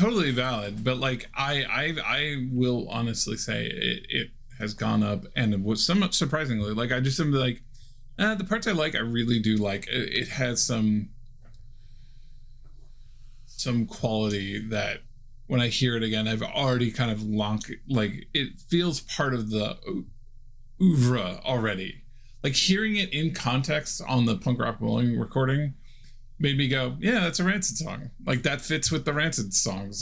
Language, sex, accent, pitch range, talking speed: English, male, American, 110-130 Hz, 170 wpm